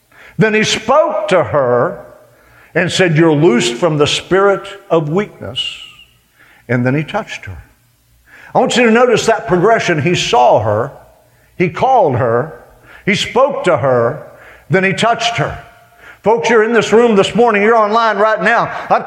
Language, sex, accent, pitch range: English, male, American, 155-245 Hz